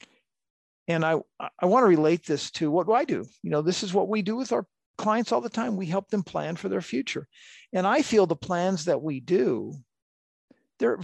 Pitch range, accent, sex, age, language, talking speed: 165-230 Hz, American, male, 50-69, English, 225 wpm